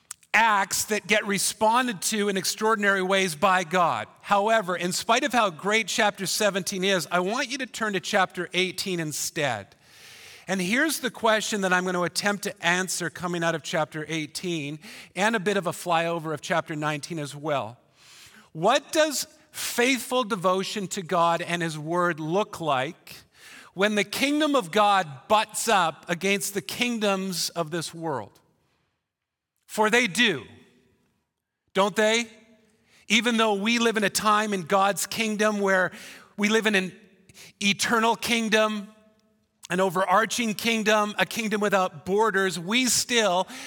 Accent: American